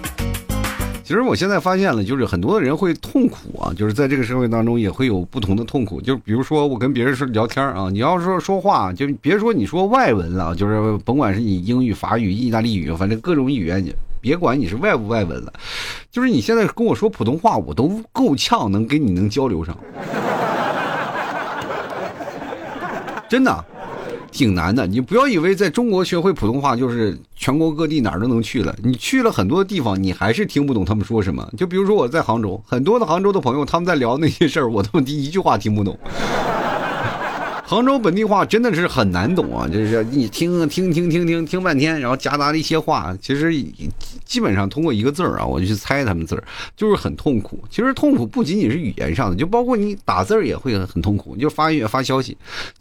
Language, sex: Chinese, male